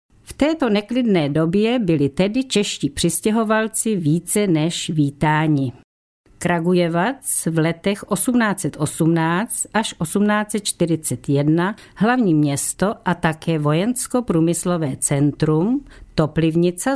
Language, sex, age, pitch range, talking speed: Czech, female, 50-69, 155-215 Hz, 85 wpm